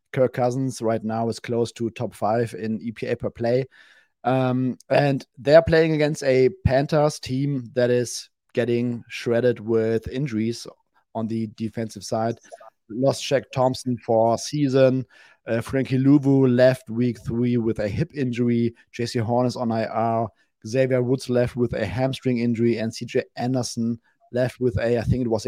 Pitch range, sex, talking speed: 115-130 Hz, male, 160 wpm